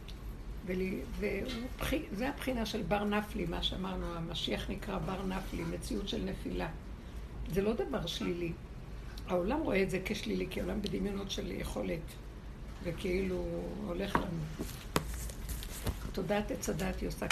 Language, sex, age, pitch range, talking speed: Hebrew, female, 60-79, 185-225 Hz, 120 wpm